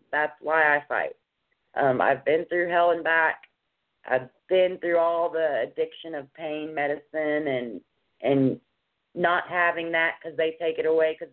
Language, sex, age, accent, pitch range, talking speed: English, female, 30-49, American, 150-190 Hz, 165 wpm